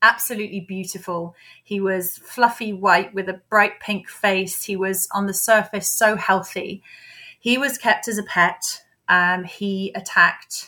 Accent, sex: British, female